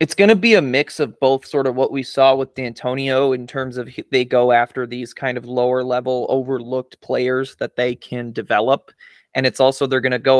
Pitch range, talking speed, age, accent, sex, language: 125-145 Hz, 225 wpm, 20-39, American, male, English